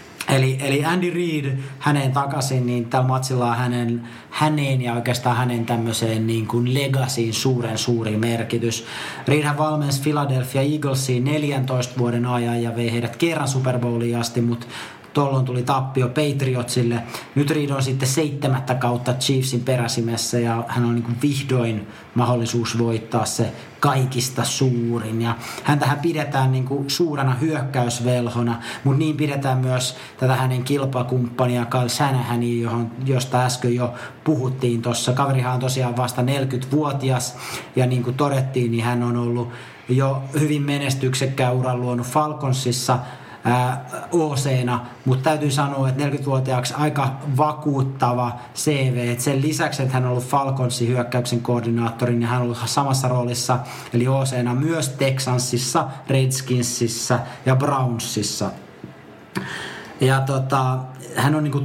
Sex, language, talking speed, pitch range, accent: male, Finnish, 130 wpm, 120-135 Hz, native